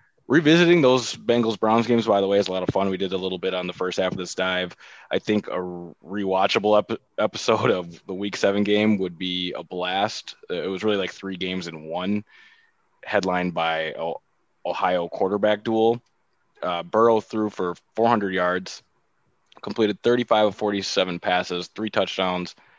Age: 20-39